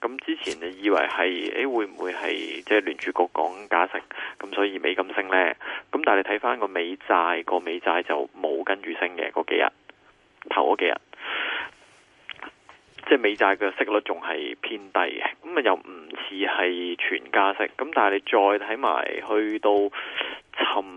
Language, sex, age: Chinese, male, 20-39